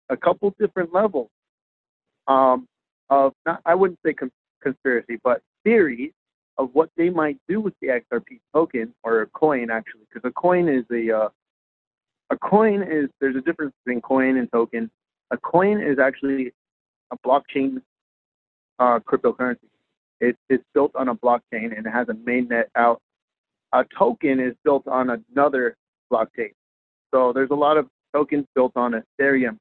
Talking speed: 160 wpm